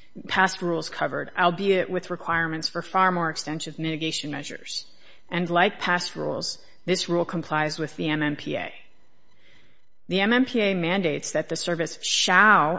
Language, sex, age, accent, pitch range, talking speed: English, female, 30-49, American, 160-190 Hz, 135 wpm